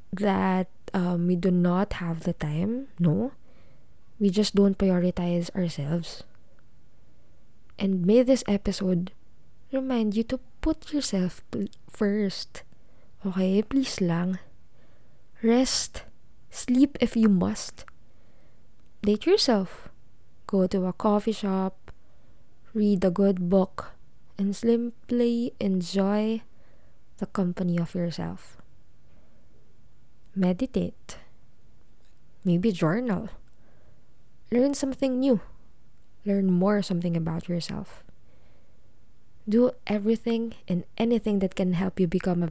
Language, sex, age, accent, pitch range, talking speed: Filipino, female, 20-39, native, 180-220 Hz, 100 wpm